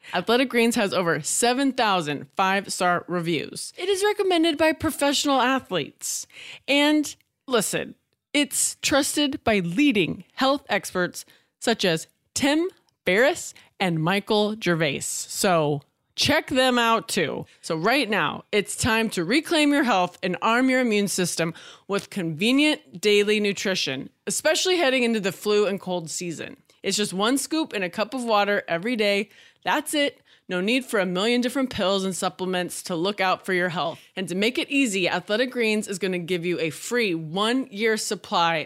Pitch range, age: 175-245 Hz, 20-39